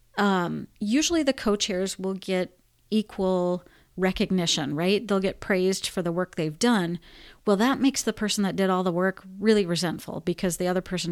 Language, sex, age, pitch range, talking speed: English, female, 30-49, 180-215 Hz, 180 wpm